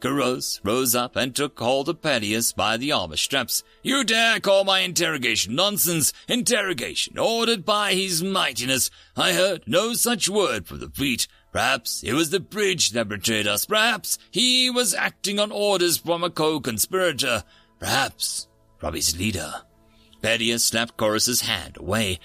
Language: English